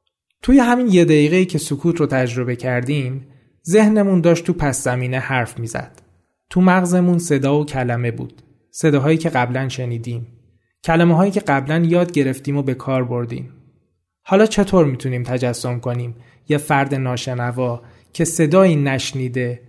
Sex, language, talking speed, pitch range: male, Persian, 140 wpm, 125-165 Hz